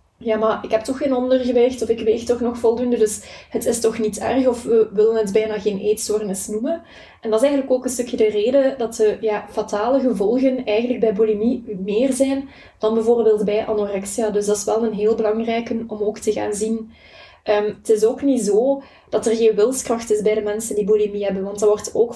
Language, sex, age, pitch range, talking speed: Dutch, female, 20-39, 210-240 Hz, 225 wpm